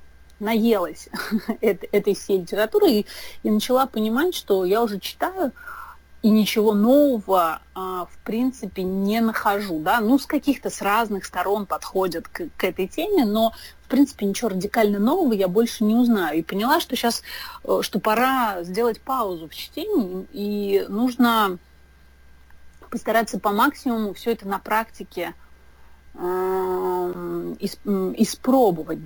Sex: female